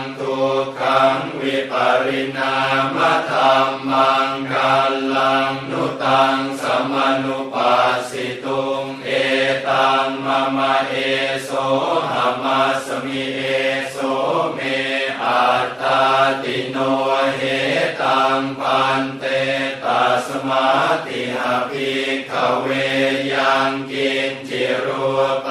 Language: Thai